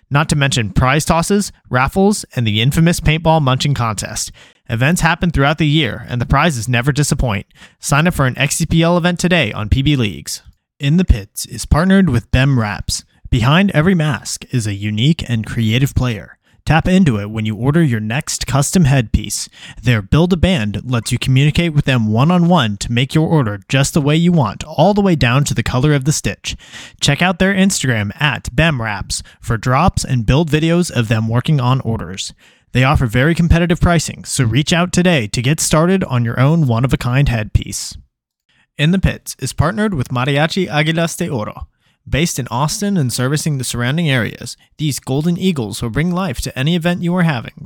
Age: 20-39